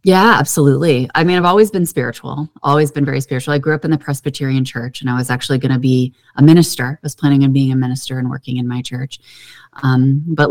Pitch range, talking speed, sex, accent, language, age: 130-150 Hz, 240 wpm, female, American, English, 30-49